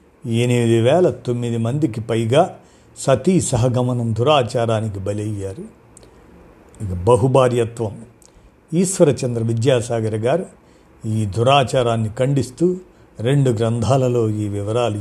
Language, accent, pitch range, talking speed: Telugu, native, 110-130 Hz, 80 wpm